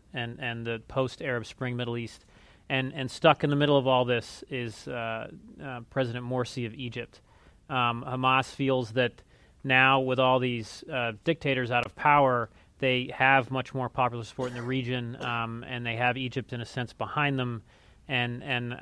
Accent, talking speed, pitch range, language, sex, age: American, 180 wpm, 120-135 Hz, English, male, 30-49